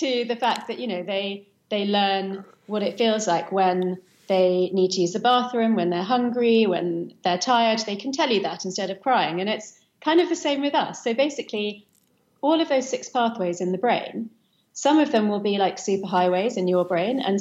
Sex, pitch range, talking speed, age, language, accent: female, 190-235 Hz, 215 wpm, 30-49, English, British